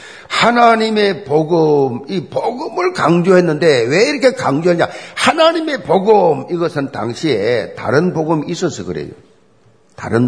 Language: Korean